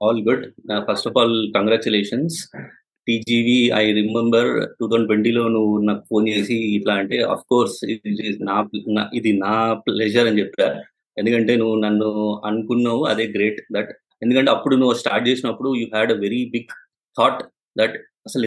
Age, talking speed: 20-39, 150 wpm